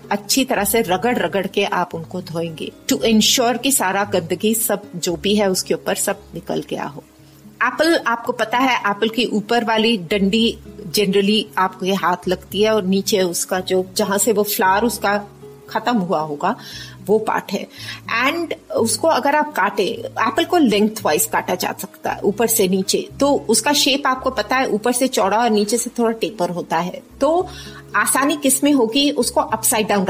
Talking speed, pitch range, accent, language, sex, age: 185 wpm, 205-270 Hz, native, Hindi, female, 30-49